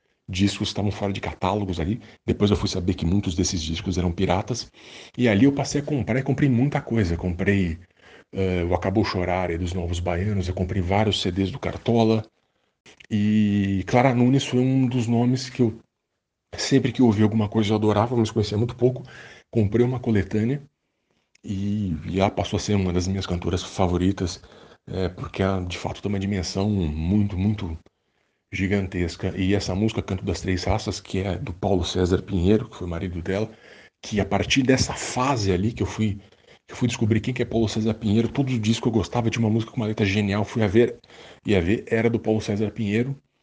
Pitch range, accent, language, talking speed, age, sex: 95-115 Hz, Brazilian, Portuguese, 200 wpm, 40-59, male